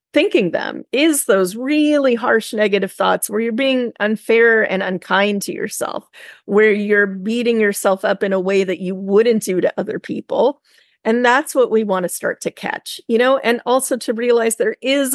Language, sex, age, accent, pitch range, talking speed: English, female, 30-49, American, 195-245 Hz, 190 wpm